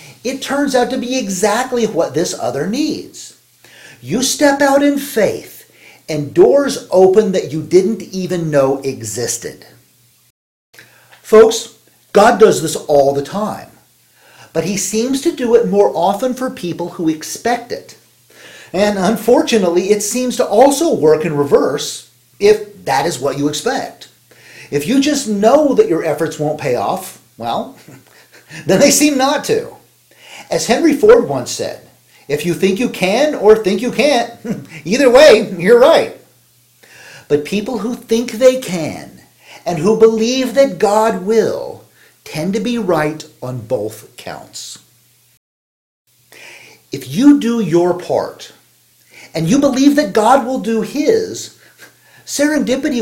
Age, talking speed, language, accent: 50-69, 145 wpm, English, American